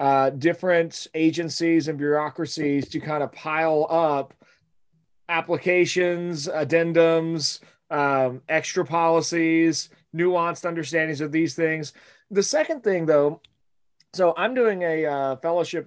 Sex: male